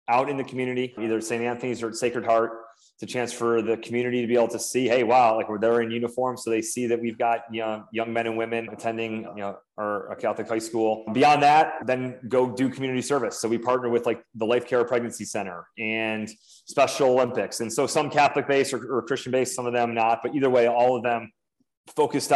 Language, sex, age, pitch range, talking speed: English, male, 30-49, 115-125 Hz, 235 wpm